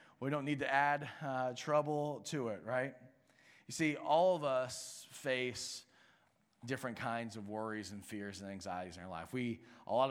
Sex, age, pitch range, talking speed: male, 30-49, 110-135 Hz, 170 wpm